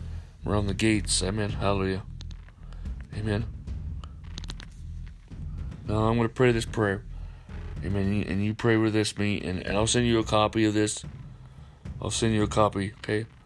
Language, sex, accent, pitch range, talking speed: English, male, American, 85-110 Hz, 155 wpm